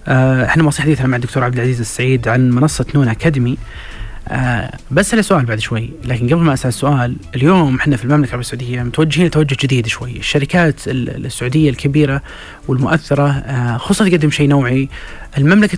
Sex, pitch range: male, 130-165 Hz